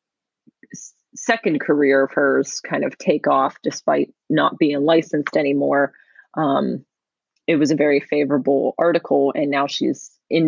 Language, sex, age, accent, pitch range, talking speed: English, female, 30-49, American, 145-180 Hz, 135 wpm